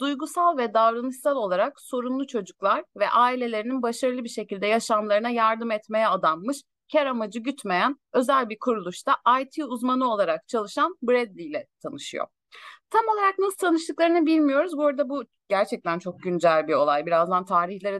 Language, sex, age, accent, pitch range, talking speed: Turkish, female, 30-49, native, 220-315 Hz, 145 wpm